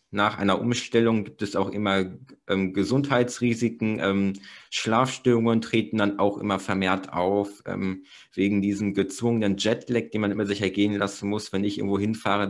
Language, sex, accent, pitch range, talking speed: German, male, German, 100-115 Hz, 160 wpm